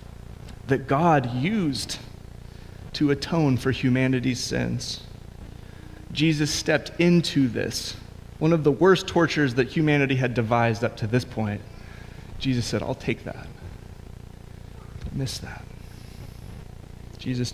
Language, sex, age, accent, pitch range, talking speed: English, male, 30-49, American, 110-135 Hz, 115 wpm